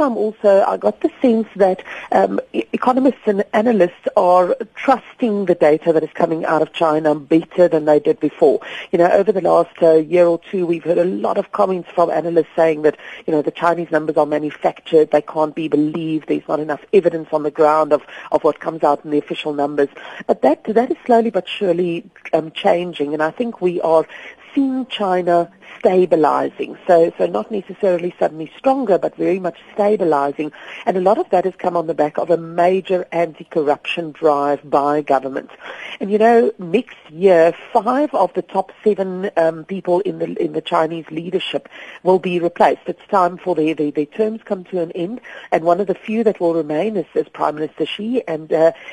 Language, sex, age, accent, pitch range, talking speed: English, female, 40-59, British, 155-200 Hz, 200 wpm